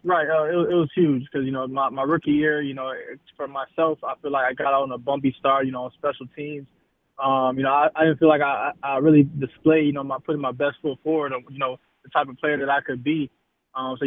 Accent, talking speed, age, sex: American, 250 wpm, 20-39, male